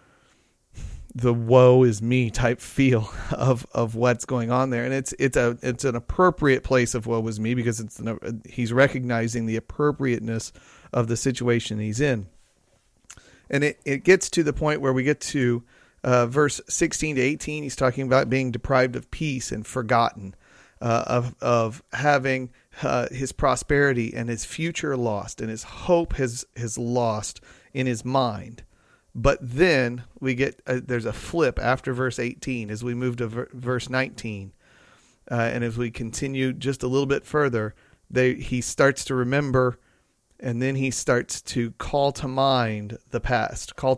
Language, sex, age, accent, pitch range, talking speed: English, male, 40-59, American, 115-135 Hz, 165 wpm